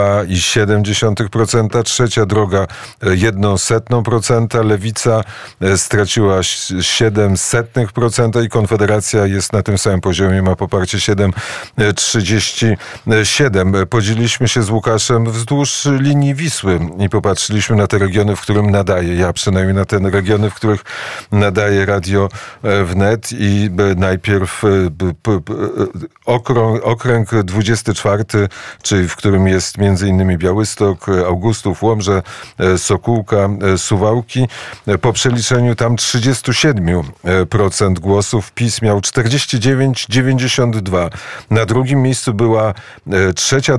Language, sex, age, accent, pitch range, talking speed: Polish, male, 40-59, native, 100-115 Hz, 100 wpm